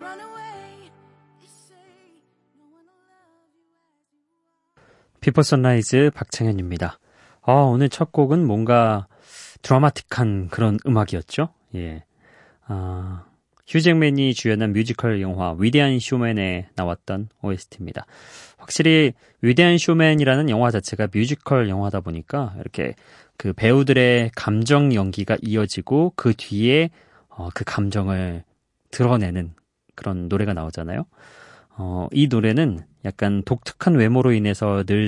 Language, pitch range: Korean, 100-150 Hz